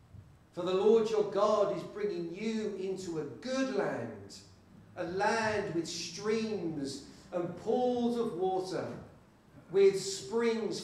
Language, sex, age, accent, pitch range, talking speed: English, male, 50-69, British, 160-215 Hz, 120 wpm